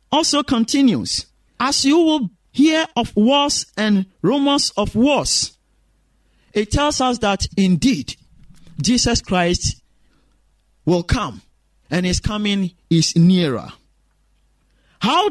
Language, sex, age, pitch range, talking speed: English, male, 50-69, 185-275 Hz, 105 wpm